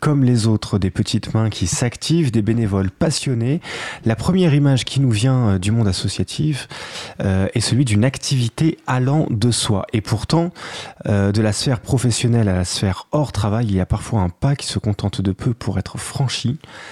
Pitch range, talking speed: 105-135 Hz, 190 wpm